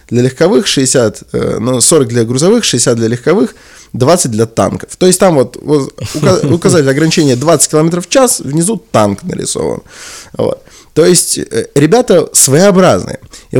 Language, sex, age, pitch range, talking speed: Russian, male, 20-39, 115-155 Hz, 135 wpm